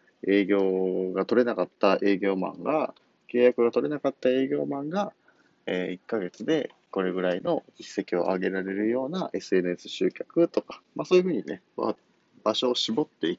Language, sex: Japanese, male